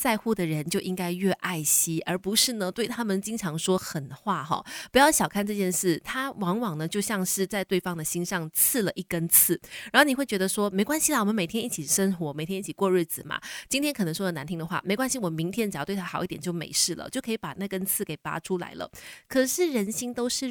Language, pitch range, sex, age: Chinese, 175-230 Hz, female, 20-39